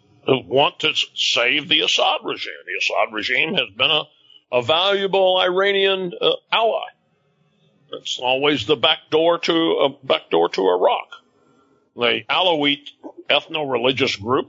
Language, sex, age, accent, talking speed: English, male, 60-79, American, 135 wpm